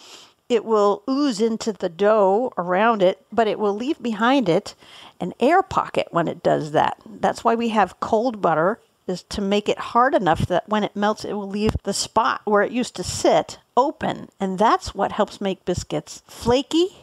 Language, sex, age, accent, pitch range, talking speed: English, female, 50-69, American, 195-260 Hz, 195 wpm